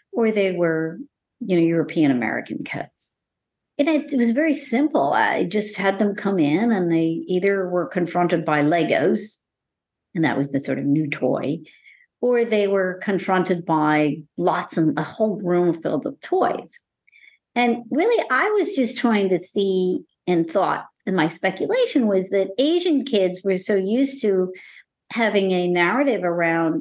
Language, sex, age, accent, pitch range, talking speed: English, female, 50-69, American, 170-255 Hz, 160 wpm